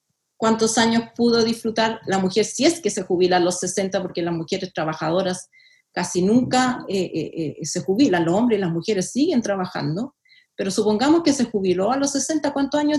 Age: 40-59